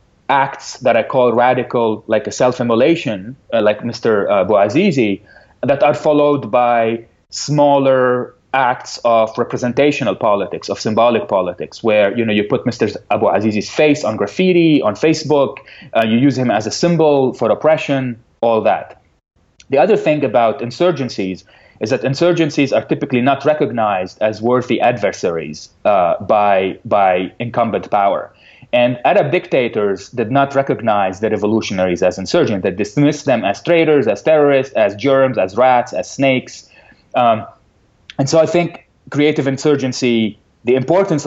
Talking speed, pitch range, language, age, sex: 145 wpm, 115-145 Hz, English, 30-49, male